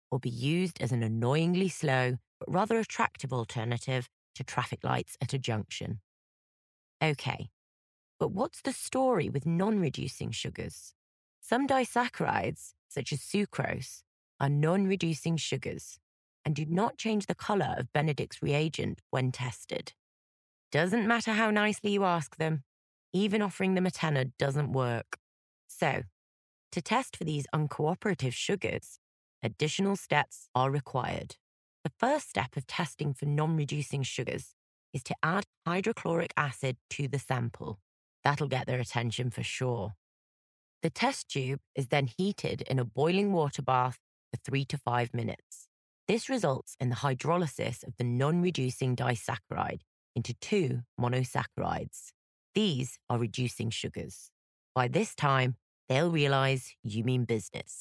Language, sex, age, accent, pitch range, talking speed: English, female, 30-49, British, 120-165 Hz, 135 wpm